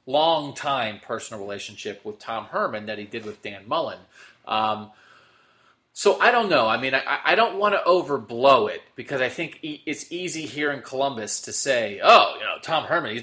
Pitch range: 115-145 Hz